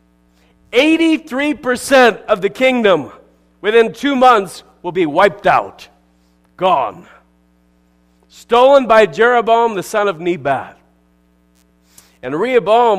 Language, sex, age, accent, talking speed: English, male, 40-59, American, 90 wpm